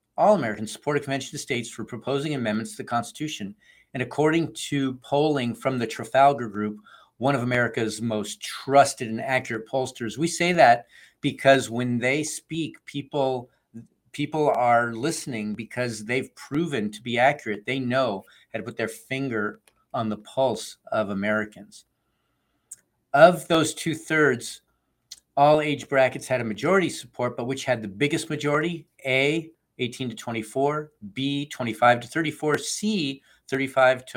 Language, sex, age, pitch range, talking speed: English, male, 50-69, 115-145 Hz, 155 wpm